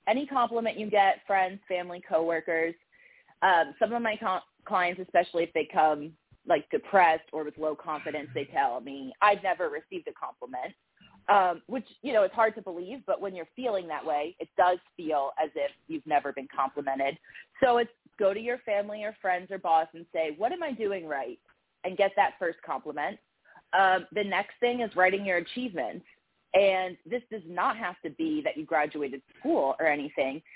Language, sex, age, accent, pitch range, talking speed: English, female, 30-49, American, 160-220 Hz, 190 wpm